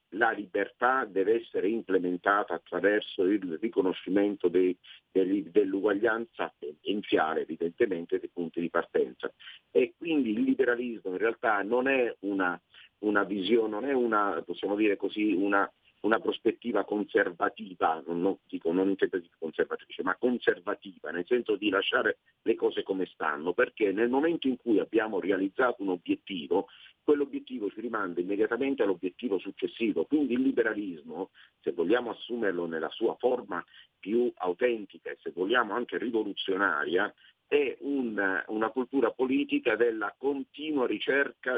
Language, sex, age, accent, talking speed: Italian, male, 50-69, native, 135 wpm